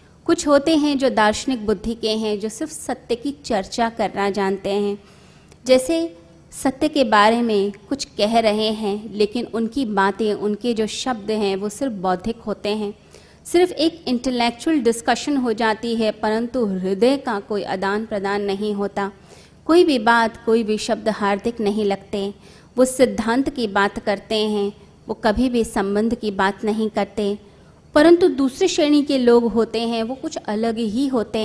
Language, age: Hindi, 30-49